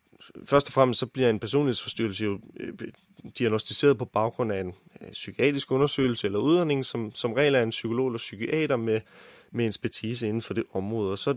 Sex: male